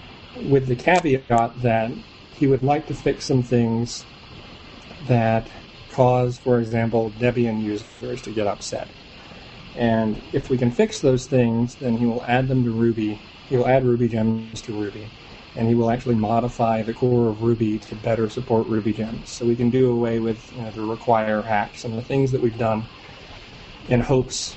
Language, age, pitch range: English, 40-59, 110-125 Hz